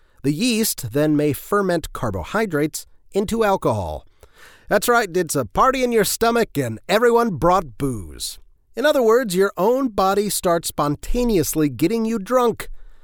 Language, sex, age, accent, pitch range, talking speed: English, male, 30-49, American, 130-200 Hz, 145 wpm